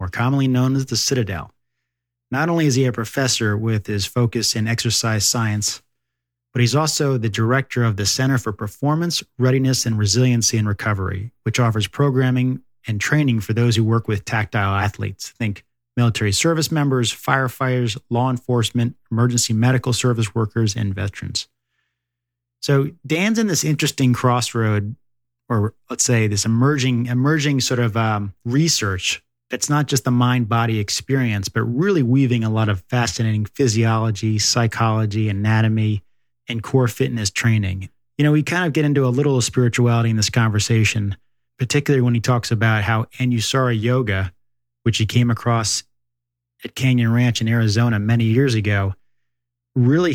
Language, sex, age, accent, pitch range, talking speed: English, male, 30-49, American, 110-130 Hz, 155 wpm